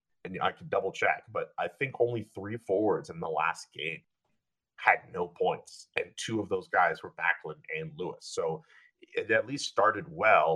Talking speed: 190 wpm